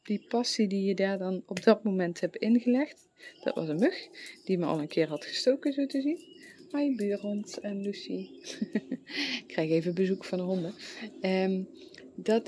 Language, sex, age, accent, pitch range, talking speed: English, female, 30-49, Dutch, 190-270 Hz, 175 wpm